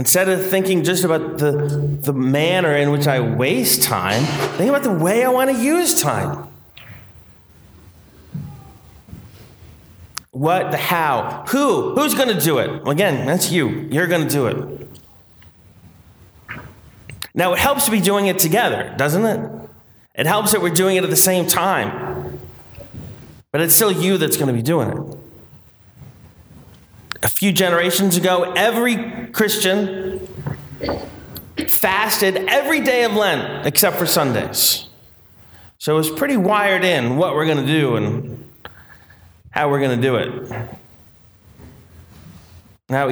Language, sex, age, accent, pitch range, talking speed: English, male, 30-49, American, 125-205 Hz, 140 wpm